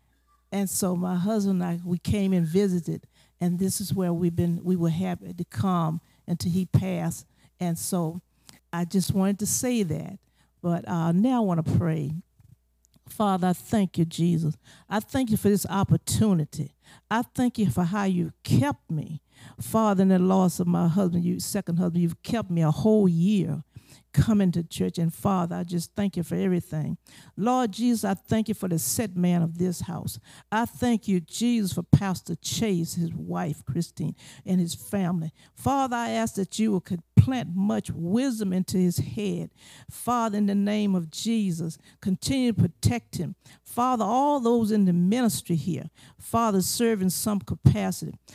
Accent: American